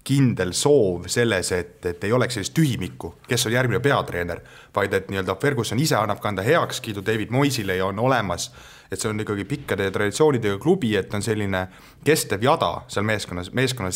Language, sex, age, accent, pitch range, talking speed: English, male, 30-49, Finnish, 100-130 Hz, 180 wpm